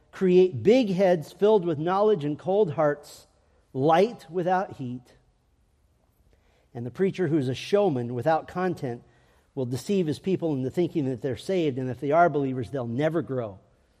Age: 50-69